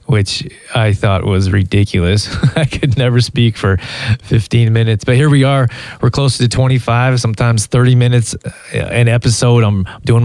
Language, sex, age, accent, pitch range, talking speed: English, male, 20-39, American, 105-120 Hz, 160 wpm